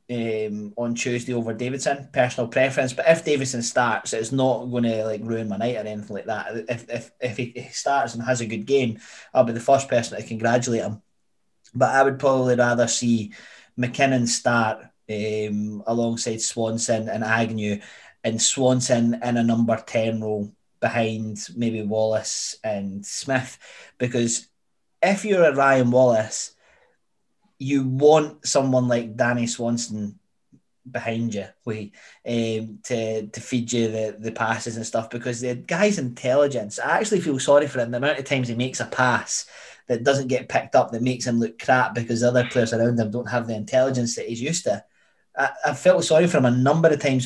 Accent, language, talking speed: British, English, 180 wpm